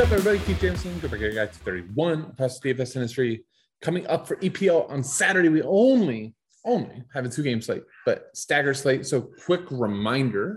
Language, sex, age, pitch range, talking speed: English, male, 30-49, 115-155 Hz, 195 wpm